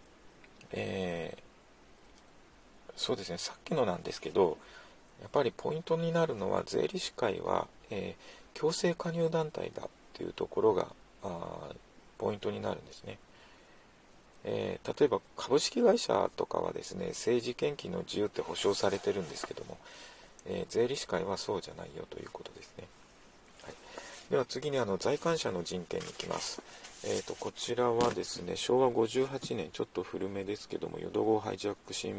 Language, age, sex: Japanese, 40-59, male